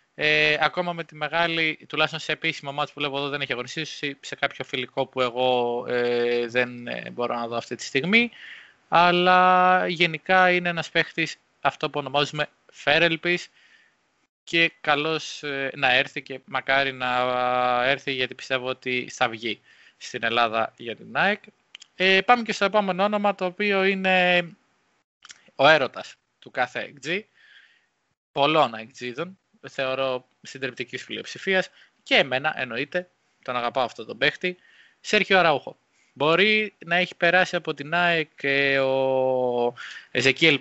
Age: 20-39